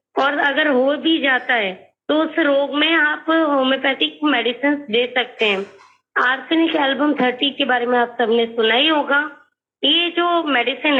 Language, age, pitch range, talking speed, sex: Hindi, 20-39, 250-305 Hz, 165 wpm, female